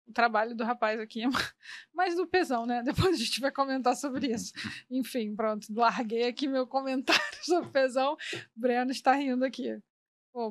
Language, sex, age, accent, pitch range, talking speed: Portuguese, female, 20-39, Brazilian, 225-255 Hz, 170 wpm